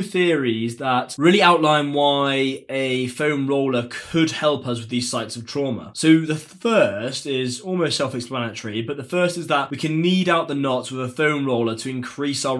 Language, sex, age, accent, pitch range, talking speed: English, male, 20-39, British, 120-150 Hz, 190 wpm